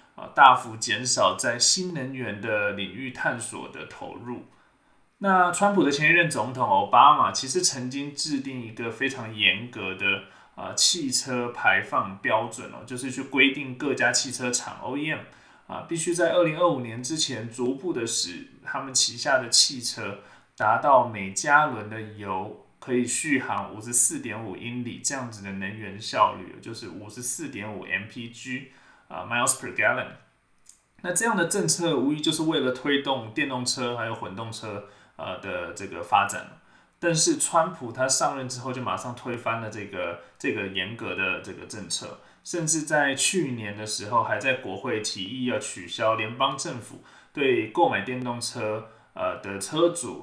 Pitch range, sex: 110-145 Hz, male